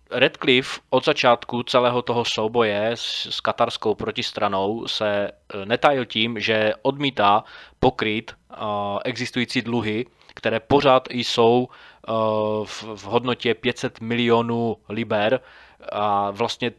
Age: 20-39